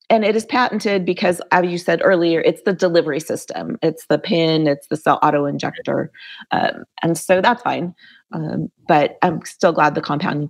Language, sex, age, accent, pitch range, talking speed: English, female, 30-49, American, 160-195 Hz, 185 wpm